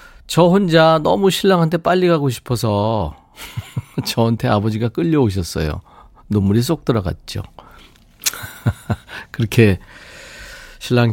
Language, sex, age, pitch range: Korean, male, 40-59, 110-155 Hz